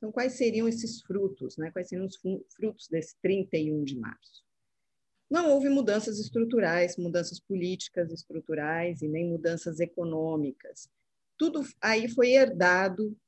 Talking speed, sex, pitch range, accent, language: 130 wpm, female, 175-245 Hz, Brazilian, Portuguese